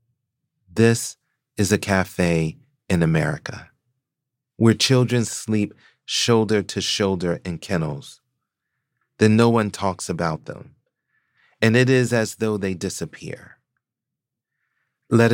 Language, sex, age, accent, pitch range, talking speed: English, male, 40-59, American, 95-125 Hz, 100 wpm